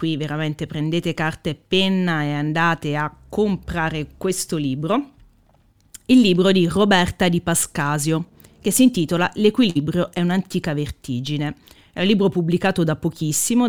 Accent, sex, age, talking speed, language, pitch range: native, female, 30-49, 135 wpm, Italian, 155-200 Hz